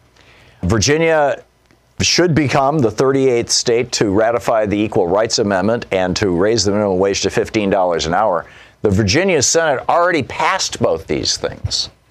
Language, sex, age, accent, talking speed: English, male, 50-69, American, 150 wpm